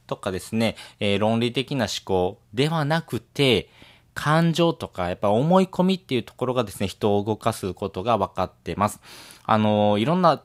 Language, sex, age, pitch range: Japanese, male, 20-39, 100-140 Hz